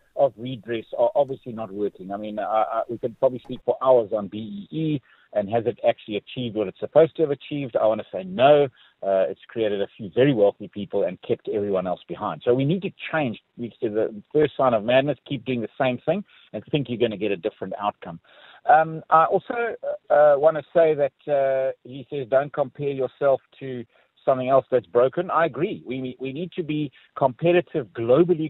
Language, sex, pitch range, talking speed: English, male, 120-145 Hz, 215 wpm